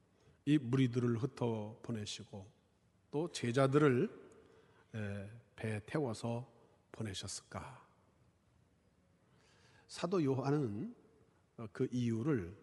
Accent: native